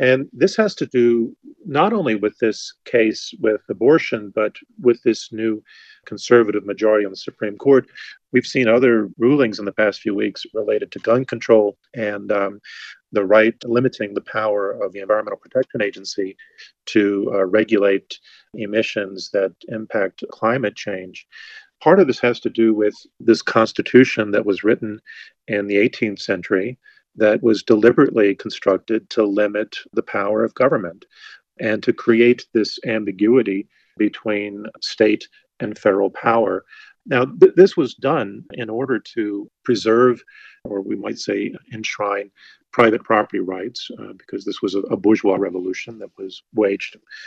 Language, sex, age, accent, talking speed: English, male, 40-59, American, 150 wpm